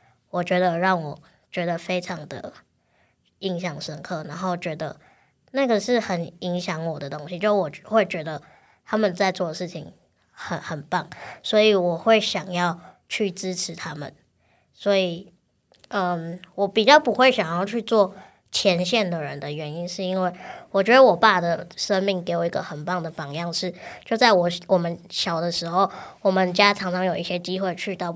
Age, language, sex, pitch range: 20-39, Chinese, male, 170-195 Hz